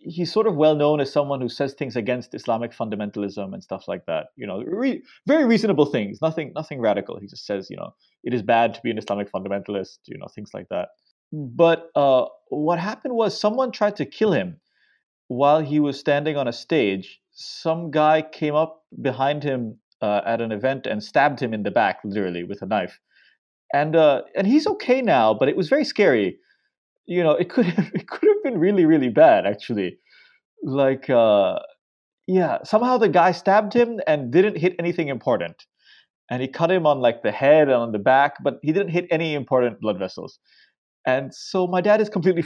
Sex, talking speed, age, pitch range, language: male, 200 wpm, 30-49, 125-190 Hz, English